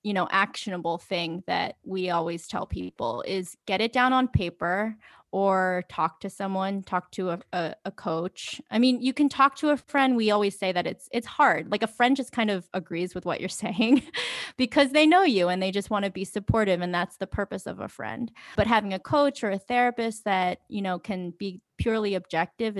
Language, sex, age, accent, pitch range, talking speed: English, female, 20-39, American, 185-225 Hz, 220 wpm